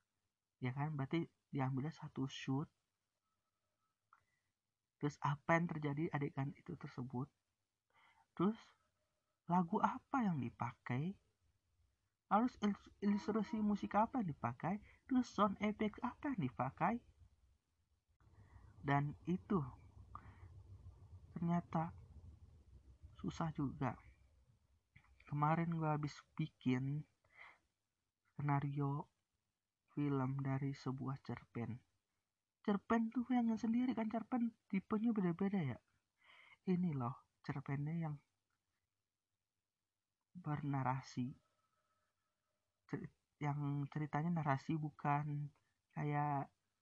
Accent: native